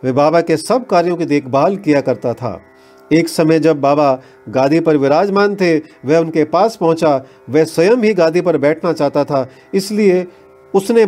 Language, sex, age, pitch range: Hindi, male, 40-59, 135-175 Hz